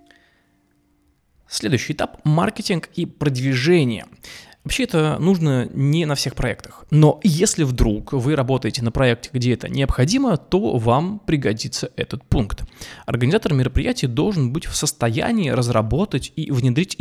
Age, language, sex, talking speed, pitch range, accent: 20-39, Russian, male, 130 wpm, 120-165 Hz, native